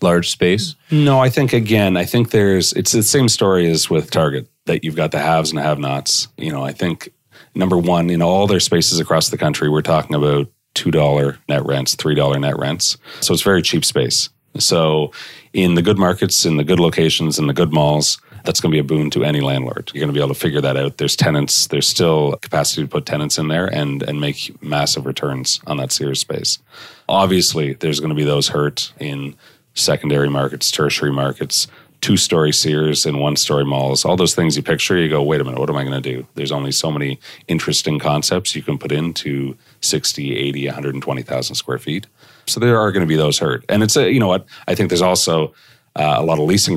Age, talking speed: 40-59, 220 wpm